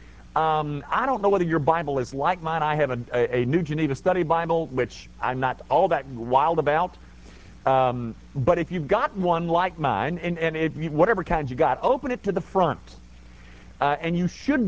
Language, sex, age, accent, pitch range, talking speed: English, male, 50-69, American, 125-195 Hz, 210 wpm